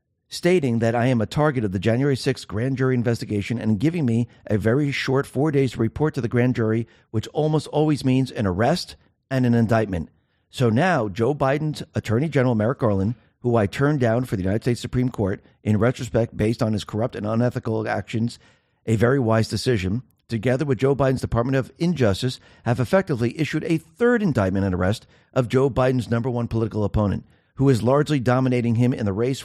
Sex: male